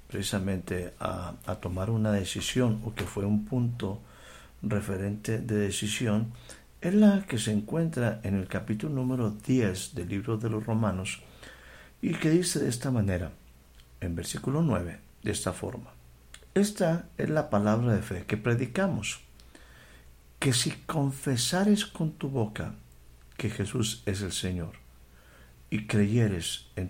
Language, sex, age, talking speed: Spanish, male, 50-69, 140 wpm